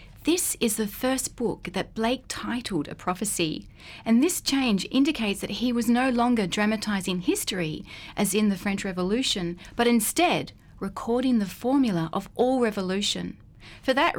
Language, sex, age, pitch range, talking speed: English, female, 30-49, 180-245 Hz, 150 wpm